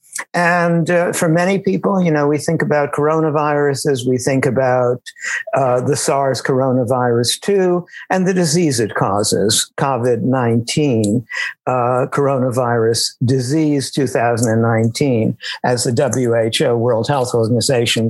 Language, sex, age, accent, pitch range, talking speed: English, male, 60-79, American, 125-160 Hz, 115 wpm